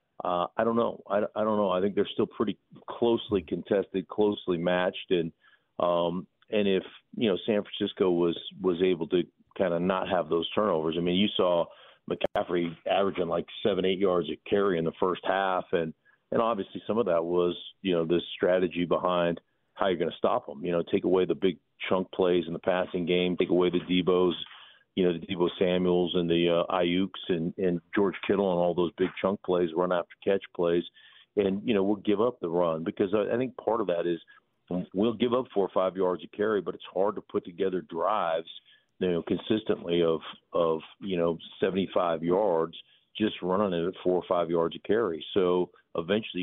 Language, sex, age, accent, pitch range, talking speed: English, male, 40-59, American, 85-95 Hz, 205 wpm